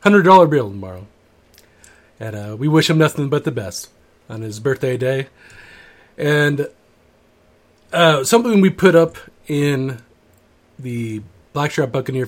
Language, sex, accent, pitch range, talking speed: English, male, American, 125-165 Hz, 120 wpm